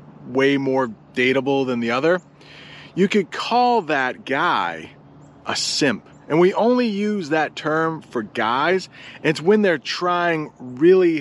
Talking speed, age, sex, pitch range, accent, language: 140 wpm, 30-49, male, 125-165 Hz, American, English